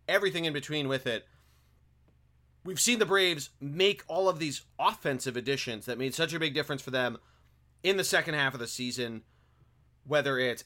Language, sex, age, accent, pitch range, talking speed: English, male, 30-49, American, 125-165 Hz, 180 wpm